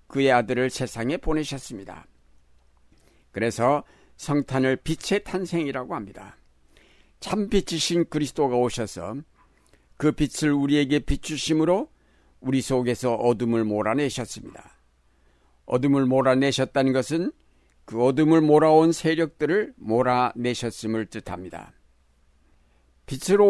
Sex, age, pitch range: male, 60-79, 110-150 Hz